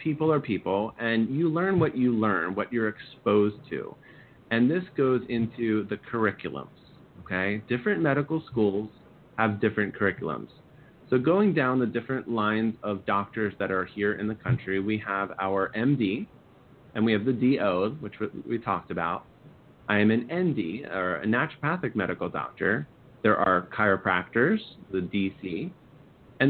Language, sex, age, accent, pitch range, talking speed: English, male, 30-49, American, 105-135 Hz, 155 wpm